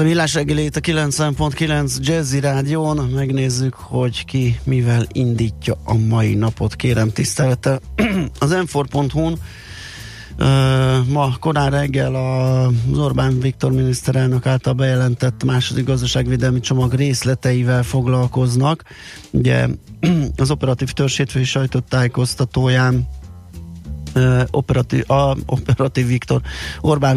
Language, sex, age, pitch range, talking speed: Hungarian, male, 30-49, 115-130 Hz, 100 wpm